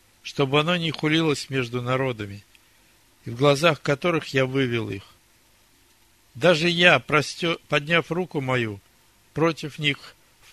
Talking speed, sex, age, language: 120 wpm, male, 60-79, Russian